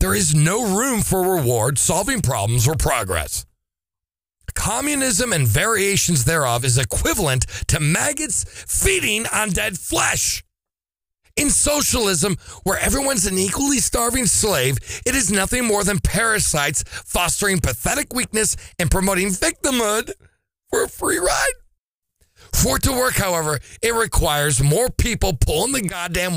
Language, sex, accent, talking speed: English, male, American, 130 wpm